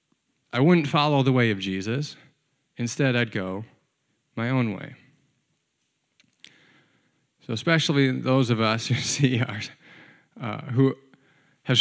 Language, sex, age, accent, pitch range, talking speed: English, male, 20-39, American, 115-145 Hz, 120 wpm